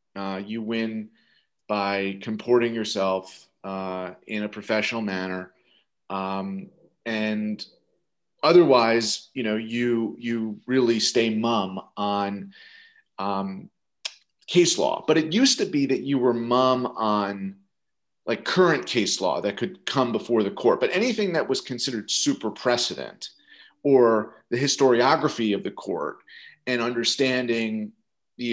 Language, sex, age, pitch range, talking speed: English, male, 30-49, 105-135 Hz, 130 wpm